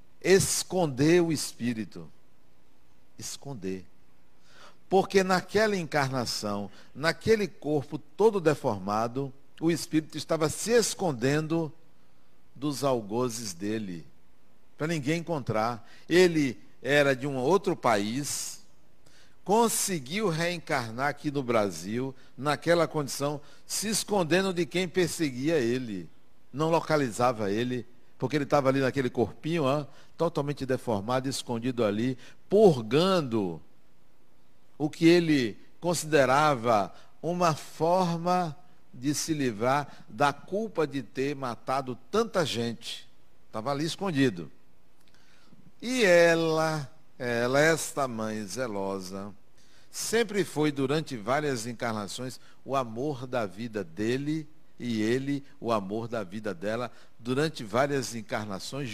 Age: 60-79